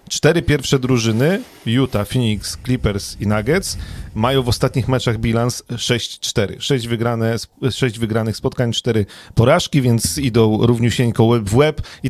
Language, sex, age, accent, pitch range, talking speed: Polish, male, 40-59, native, 110-130 Hz, 145 wpm